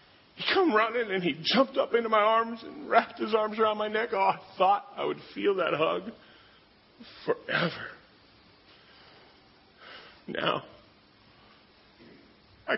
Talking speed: 130 wpm